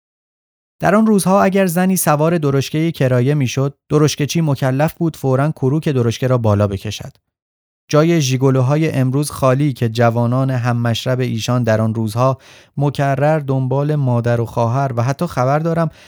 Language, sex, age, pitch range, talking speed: Persian, male, 30-49, 110-145 Hz, 140 wpm